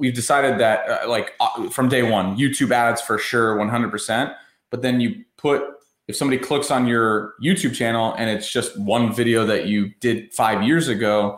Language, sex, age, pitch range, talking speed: English, male, 30-49, 105-130 Hz, 190 wpm